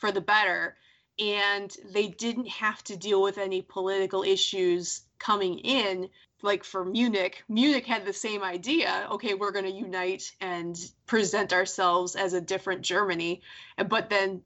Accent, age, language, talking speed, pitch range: American, 20-39, English, 155 wpm, 185-220 Hz